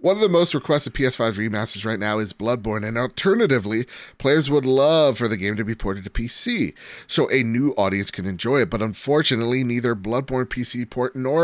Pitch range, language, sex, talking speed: 105-135 Hz, English, male, 200 wpm